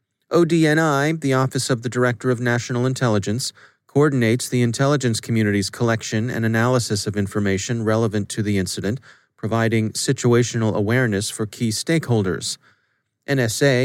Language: English